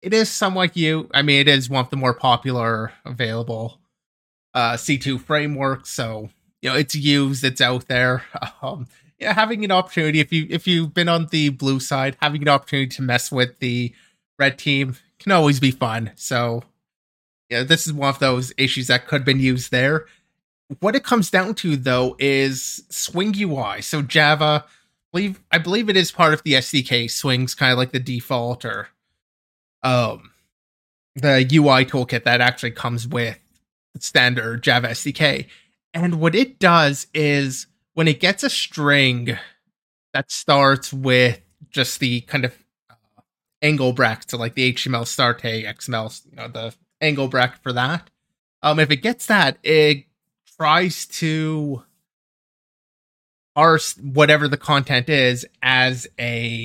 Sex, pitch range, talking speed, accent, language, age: male, 125-155 Hz, 165 wpm, American, English, 30-49